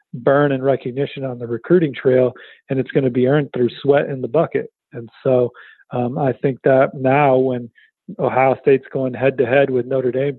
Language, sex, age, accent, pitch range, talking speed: English, male, 40-59, American, 130-160 Hz, 190 wpm